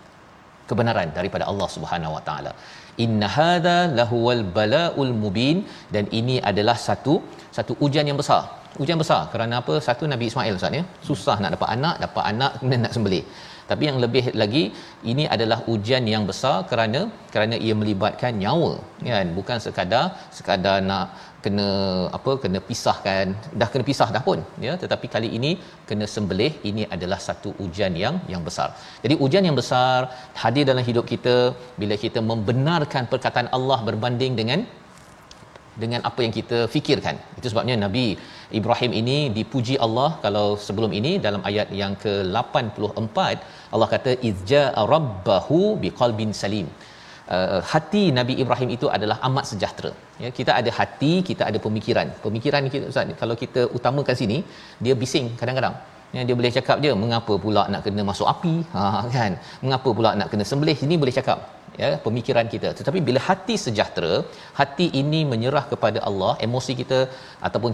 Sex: male